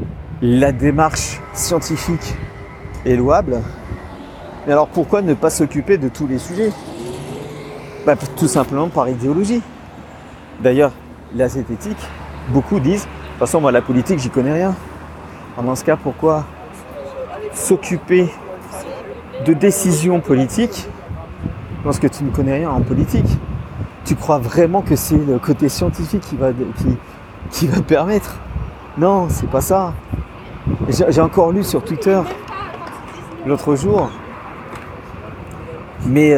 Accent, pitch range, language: French, 115-160 Hz, French